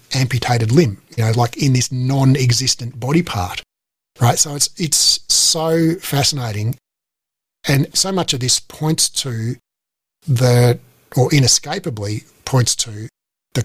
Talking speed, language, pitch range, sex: 130 wpm, English, 115-145 Hz, male